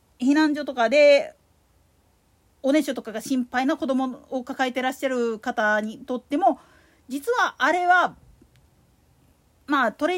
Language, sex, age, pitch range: Japanese, female, 40-59, 245-365 Hz